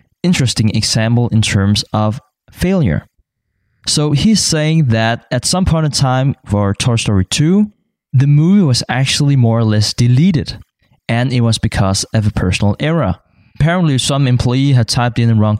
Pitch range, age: 110-145 Hz, 20-39